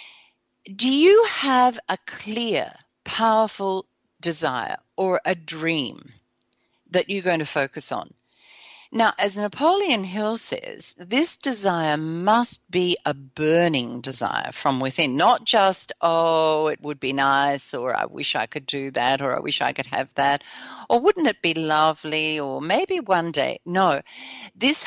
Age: 50-69